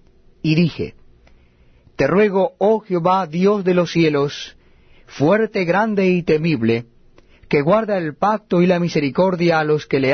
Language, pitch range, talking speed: Spanish, 145-190 Hz, 150 wpm